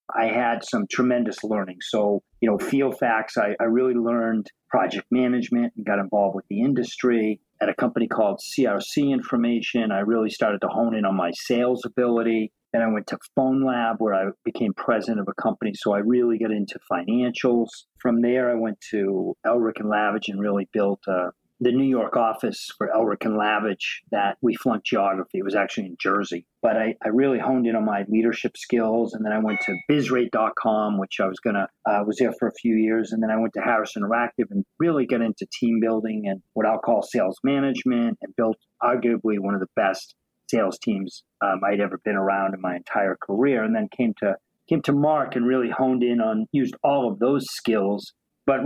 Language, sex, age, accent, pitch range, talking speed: English, male, 40-59, American, 105-125 Hz, 210 wpm